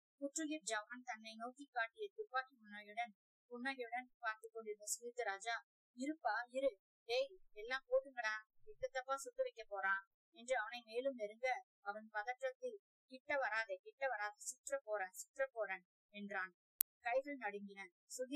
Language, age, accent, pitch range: Tamil, 20-39, native, 210-275 Hz